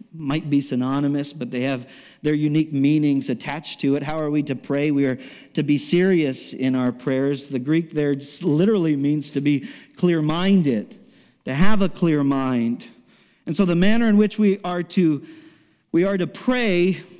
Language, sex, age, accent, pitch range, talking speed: English, male, 50-69, American, 145-200 Hz, 180 wpm